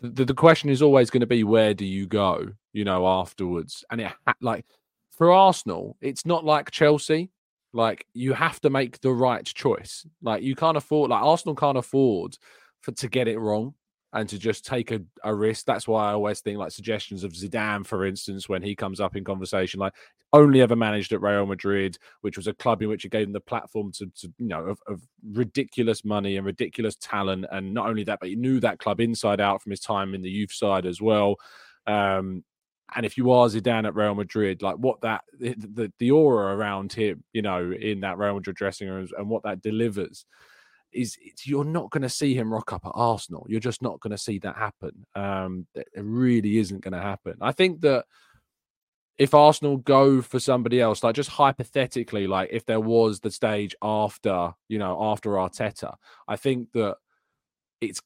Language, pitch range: English, 100-125 Hz